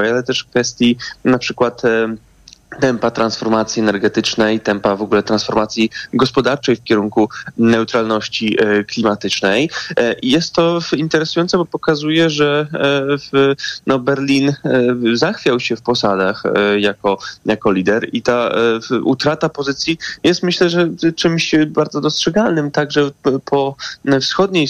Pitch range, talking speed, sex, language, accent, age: 115-140 Hz, 110 wpm, male, Polish, native, 20-39